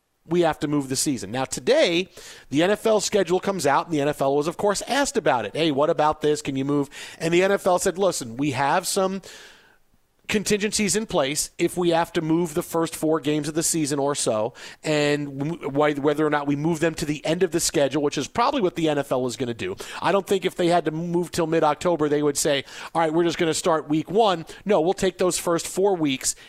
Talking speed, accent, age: 240 wpm, American, 40-59